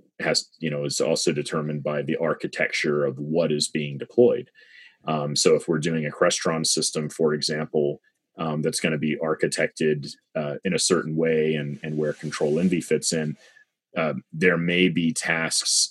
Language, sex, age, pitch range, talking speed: English, male, 30-49, 75-80 Hz, 175 wpm